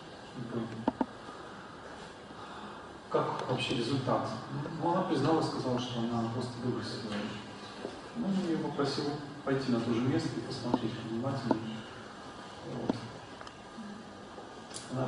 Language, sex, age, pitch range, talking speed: English, male, 40-59, 115-130 Hz, 95 wpm